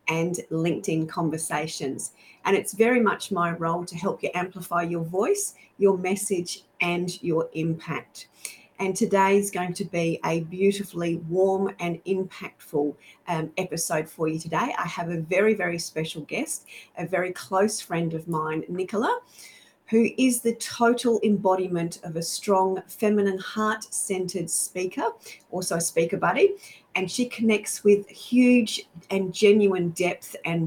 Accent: Australian